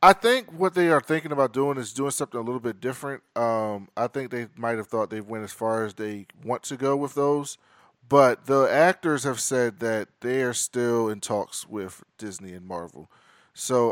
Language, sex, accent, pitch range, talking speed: English, male, American, 105-135 Hz, 210 wpm